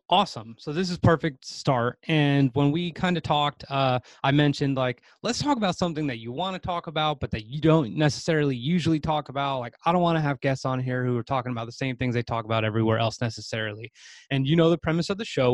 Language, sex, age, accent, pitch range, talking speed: English, male, 20-39, American, 120-145 Hz, 245 wpm